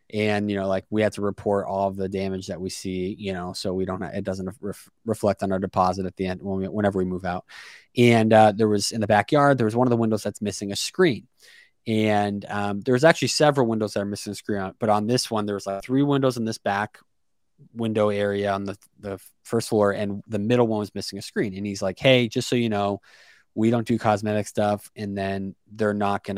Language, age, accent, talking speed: English, 20-39, American, 245 wpm